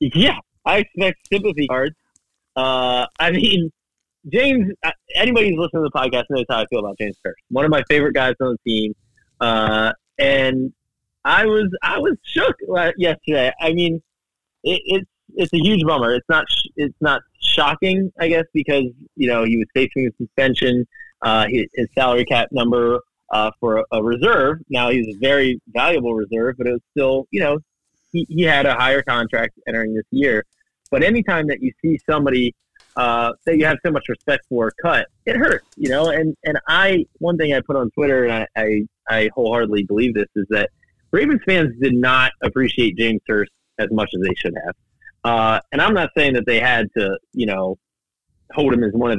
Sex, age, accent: male, 20-39, American